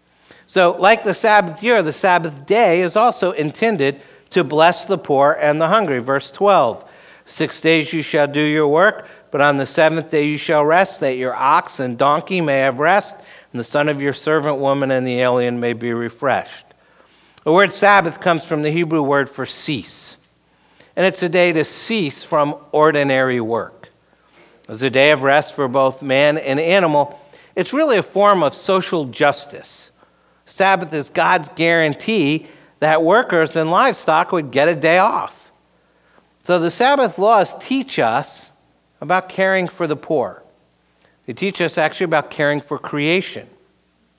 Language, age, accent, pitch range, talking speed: English, 60-79, American, 140-185 Hz, 170 wpm